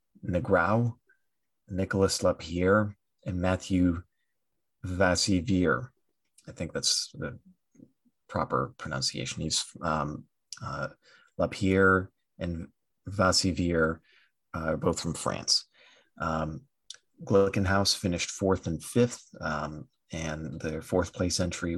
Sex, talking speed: male, 95 wpm